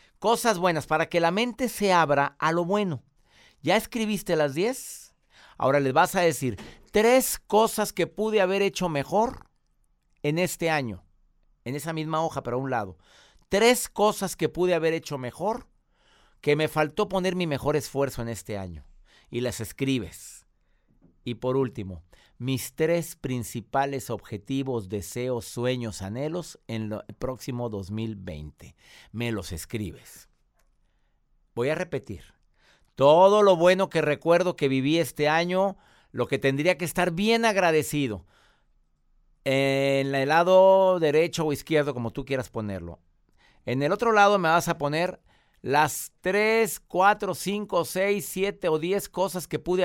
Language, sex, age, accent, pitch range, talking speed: Spanish, male, 50-69, Mexican, 120-185 Hz, 150 wpm